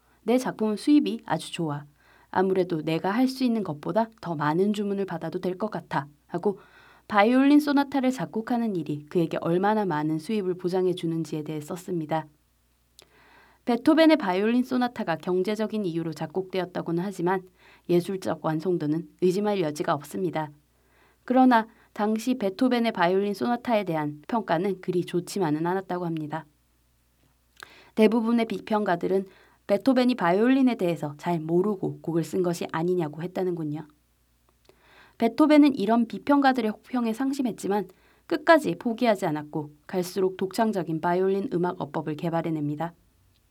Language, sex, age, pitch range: Korean, female, 20-39, 165-225 Hz